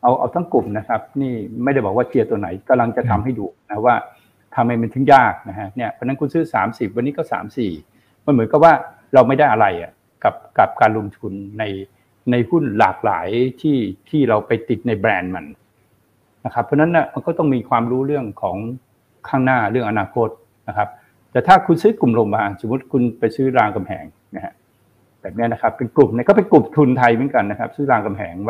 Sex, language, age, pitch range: male, Thai, 60-79, 115-145 Hz